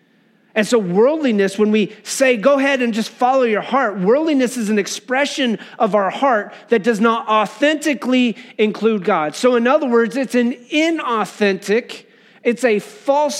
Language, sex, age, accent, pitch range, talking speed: English, male, 40-59, American, 205-255 Hz, 160 wpm